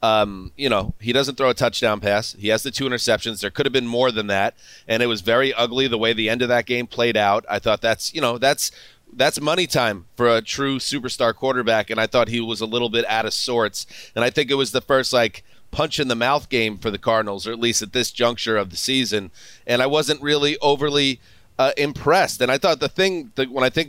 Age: 30-49